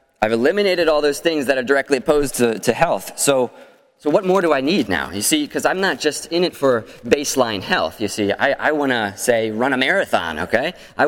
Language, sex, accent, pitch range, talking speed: English, male, American, 100-150 Hz, 235 wpm